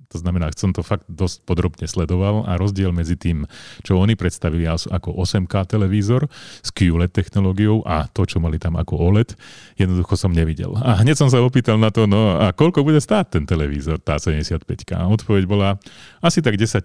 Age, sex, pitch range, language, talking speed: 30-49, male, 85-105 Hz, Slovak, 185 wpm